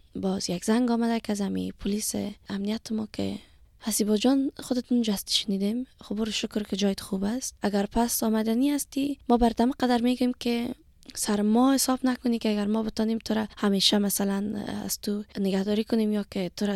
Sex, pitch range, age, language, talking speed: female, 200-230 Hz, 20-39, Persian, 175 wpm